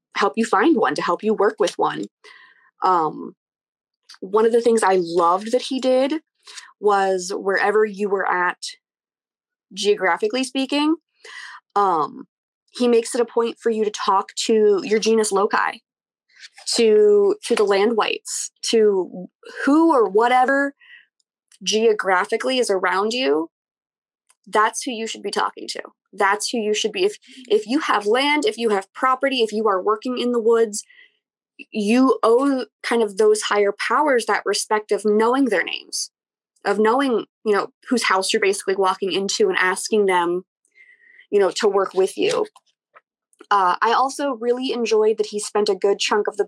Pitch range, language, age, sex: 205-260 Hz, English, 20-39, female